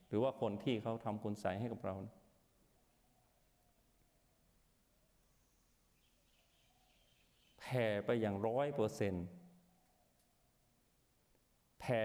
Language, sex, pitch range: Thai, male, 95-120 Hz